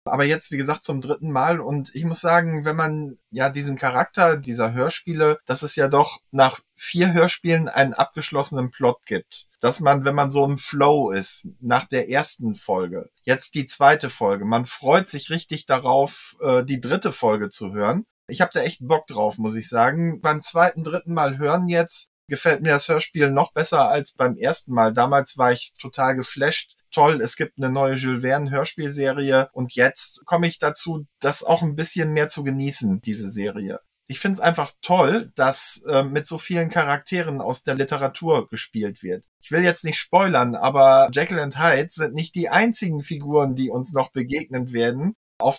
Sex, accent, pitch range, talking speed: male, German, 130-160 Hz, 190 wpm